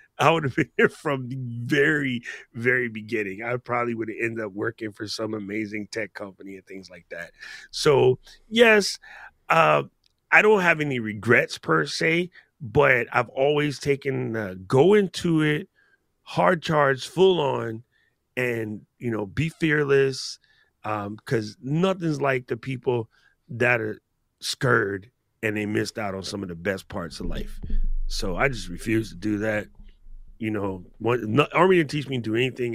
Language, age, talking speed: English, 30-49, 170 wpm